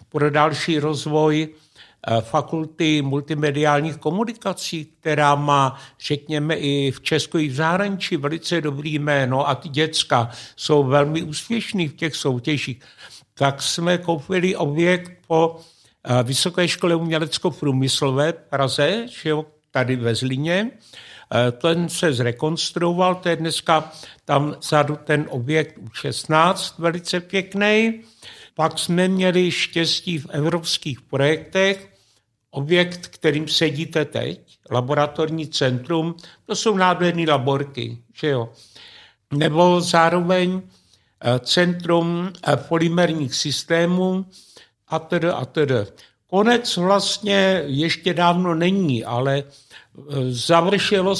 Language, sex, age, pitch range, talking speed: Czech, male, 60-79, 140-175 Hz, 100 wpm